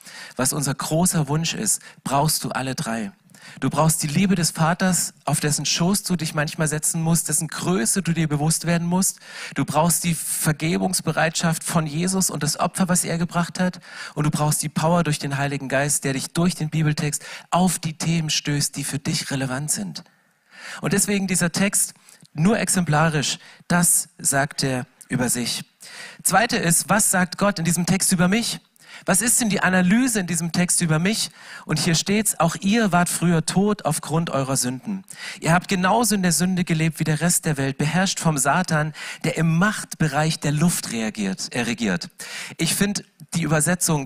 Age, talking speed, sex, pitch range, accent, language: 40-59, 185 wpm, male, 155-185 Hz, German, German